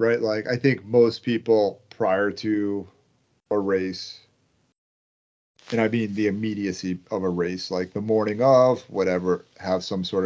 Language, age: English, 30-49